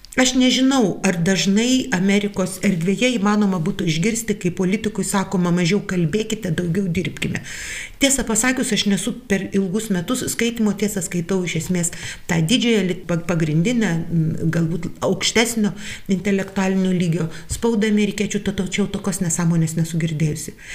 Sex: female